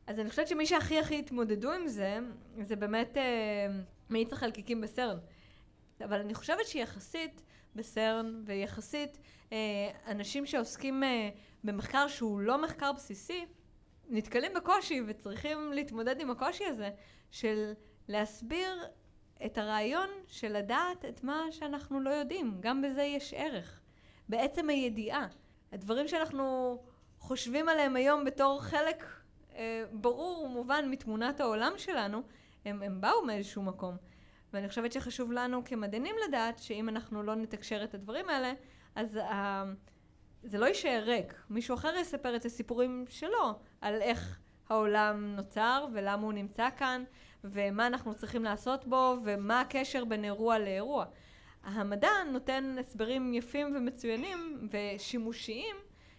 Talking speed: 130 wpm